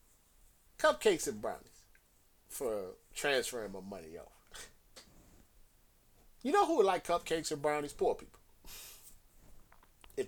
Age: 30-49